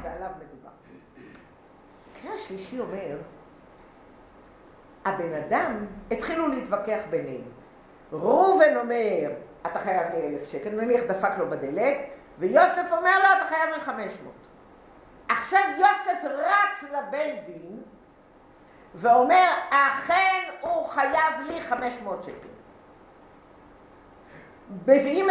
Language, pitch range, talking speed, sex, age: English, 225-320 Hz, 100 wpm, female, 60-79